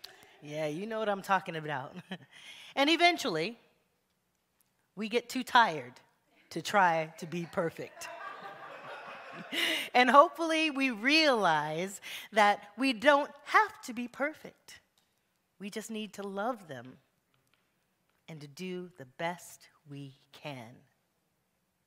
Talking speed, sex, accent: 115 wpm, female, American